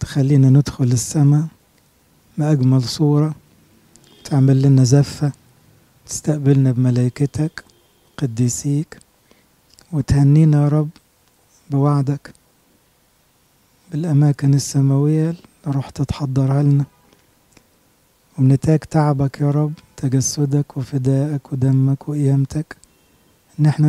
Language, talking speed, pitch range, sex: English, 75 wpm, 135-150 Hz, male